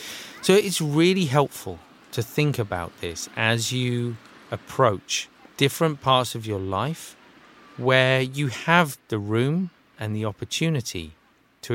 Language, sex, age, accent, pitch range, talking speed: English, male, 30-49, British, 100-145 Hz, 130 wpm